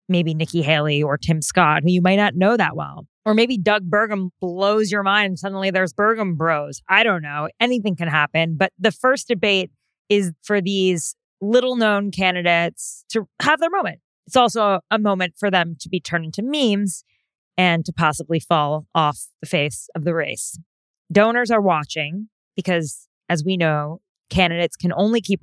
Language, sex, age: English, female, 20-39